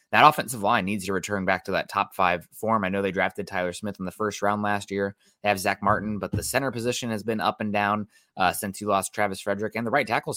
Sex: male